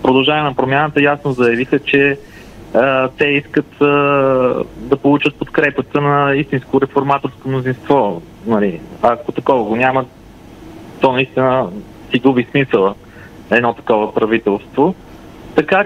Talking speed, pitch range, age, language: 115 wpm, 130-165 Hz, 30-49, Bulgarian